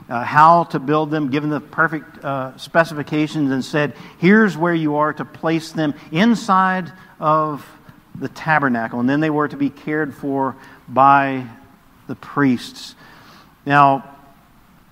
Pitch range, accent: 130-155 Hz, American